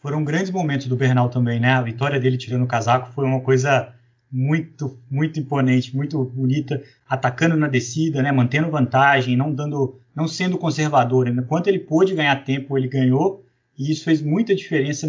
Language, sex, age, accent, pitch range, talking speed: Portuguese, male, 20-39, Brazilian, 130-175 Hz, 175 wpm